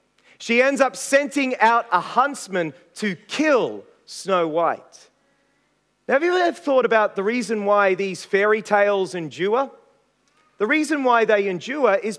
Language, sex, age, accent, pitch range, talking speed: English, male, 40-59, Australian, 195-265 Hz, 145 wpm